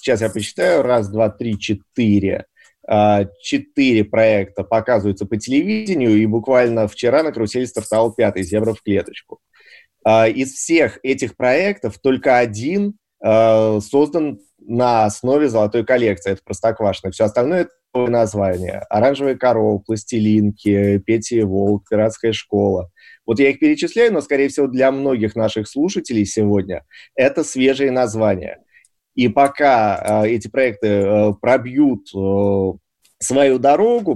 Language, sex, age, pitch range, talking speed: Russian, male, 20-39, 105-135 Hz, 135 wpm